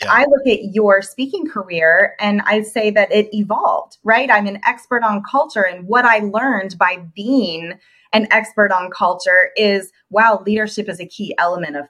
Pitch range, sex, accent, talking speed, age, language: 200-255 Hz, female, American, 180 wpm, 20-39, English